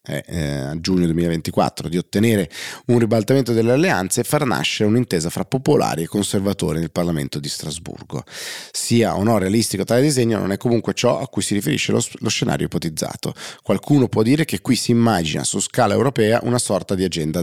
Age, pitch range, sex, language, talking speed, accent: 30-49, 90-115 Hz, male, Italian, 185 wpm, native